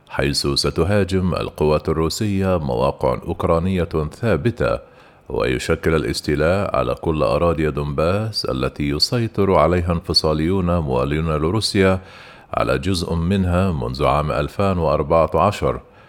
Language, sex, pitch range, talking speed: Arabic, male, 80-100 Hz, 95 wpm